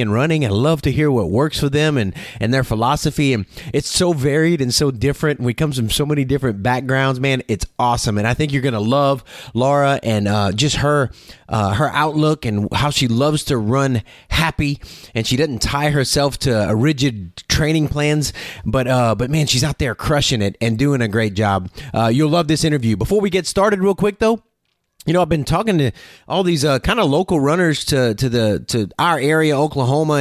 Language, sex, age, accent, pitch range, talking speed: English, male, 30-49, American, 120-160 Hz, 215 wpm